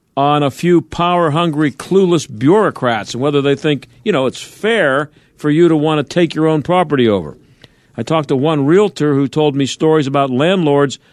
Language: English